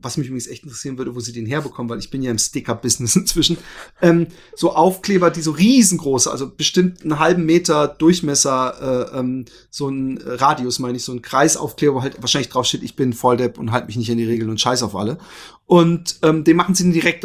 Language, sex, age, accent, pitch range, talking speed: German, male, 30-49, German, 135-165 Hz, 225 wpm